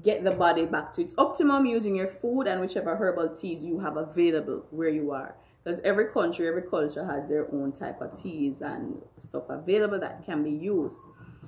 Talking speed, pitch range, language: 200 wpm, 165-210 Hz, English